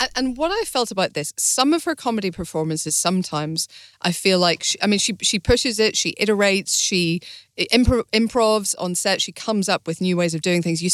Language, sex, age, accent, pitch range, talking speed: English, female, 40-59, British, 165-205 Hz, 215 wpm